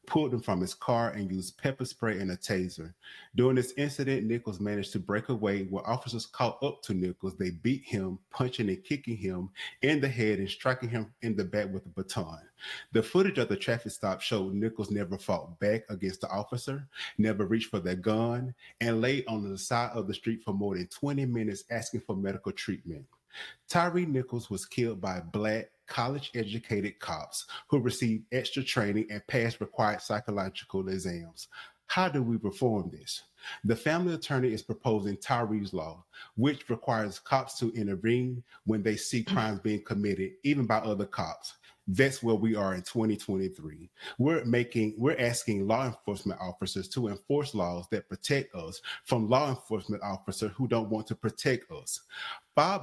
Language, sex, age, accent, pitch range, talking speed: English, male, 30-49, American, 100-125 Hz, 175 wpm